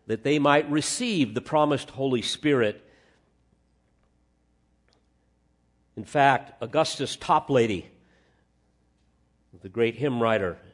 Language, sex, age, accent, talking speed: English, male, 50-69, American, 90 wpm